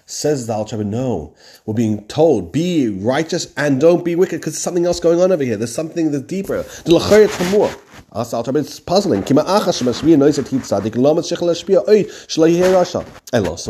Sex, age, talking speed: male, 30-49, 135 wpm